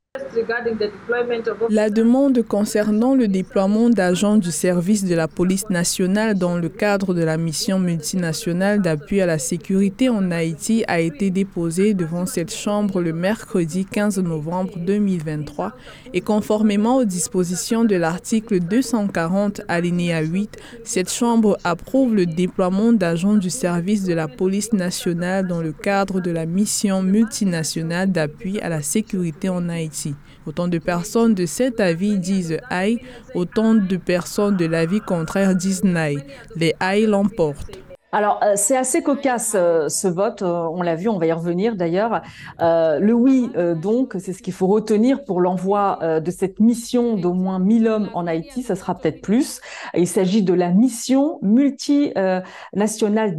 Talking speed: 155 wpm